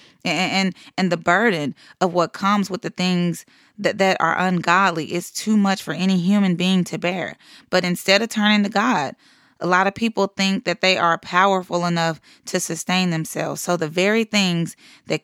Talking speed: 190 wpm